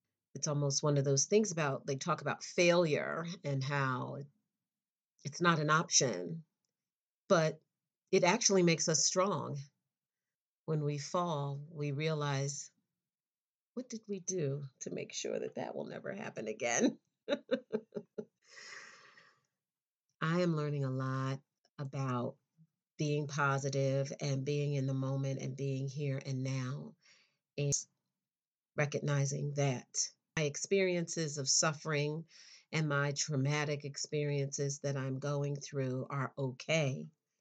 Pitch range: 140-165 Hz